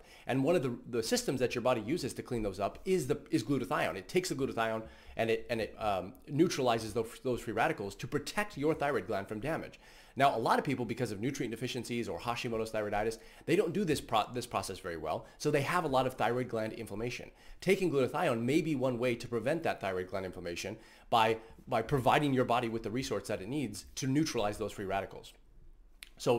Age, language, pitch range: 30-49, English, 115-145 Hz